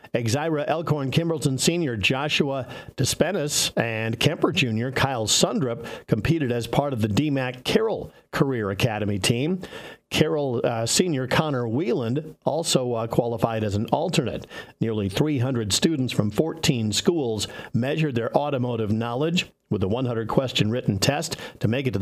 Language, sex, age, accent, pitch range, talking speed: English, male, 50-69, American, 115-155 Hz, 140 wpm